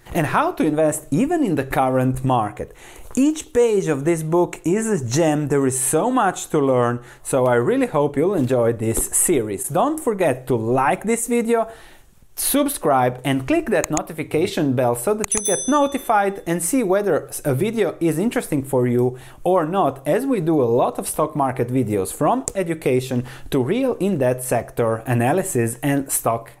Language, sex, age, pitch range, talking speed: English, male, 30-49, 130-215 Hz, 175 wpm